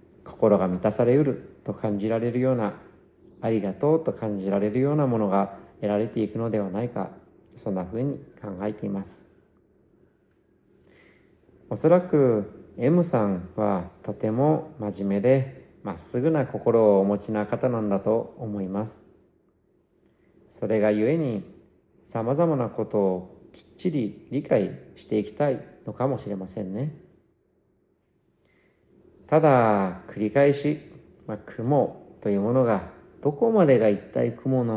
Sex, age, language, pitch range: male, 40-59, Japanese, 100-130 Hz